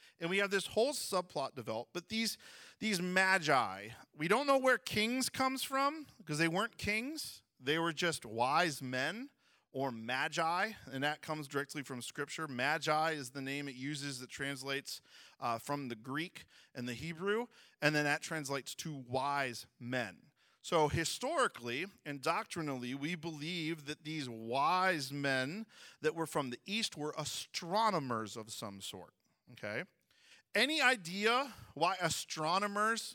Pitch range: 140-215 Hz